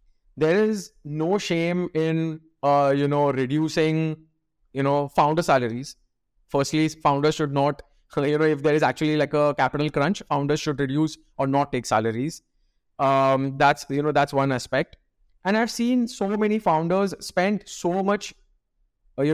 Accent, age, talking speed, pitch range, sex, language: Indian, 30-49, 160 wpm, 140-175 Hz, male, English